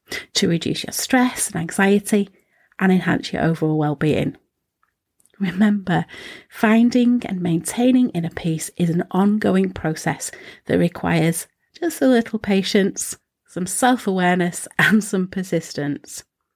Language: English